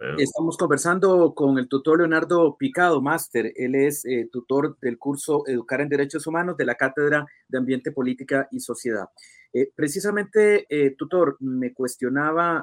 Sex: male